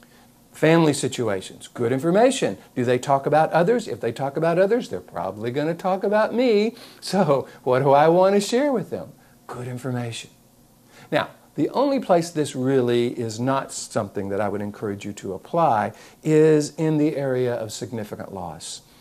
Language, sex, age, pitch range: English, male, 50-69, 115-165 Hz